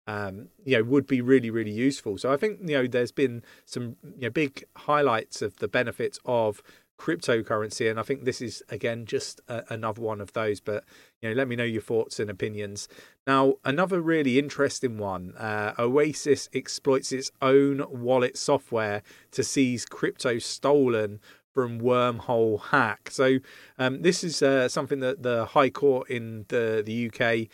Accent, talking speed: British, 175 wpm